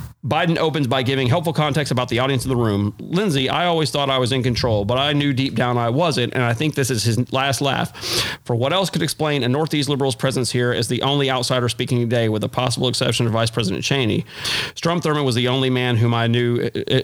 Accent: American